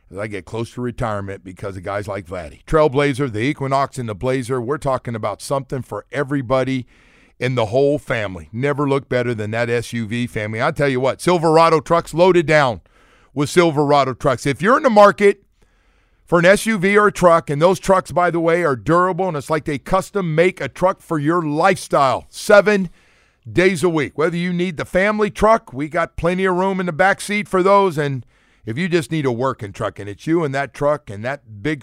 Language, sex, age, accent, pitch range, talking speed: English, male, 50-69, American, 120-165 Hz, 210 wpm